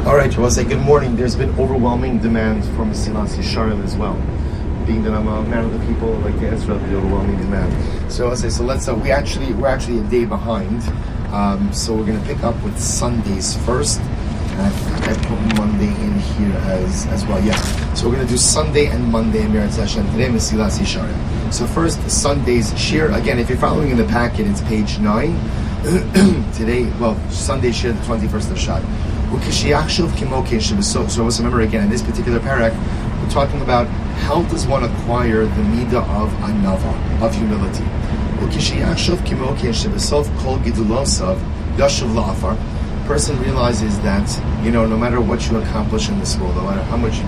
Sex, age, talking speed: male, 30-49, 180 wpm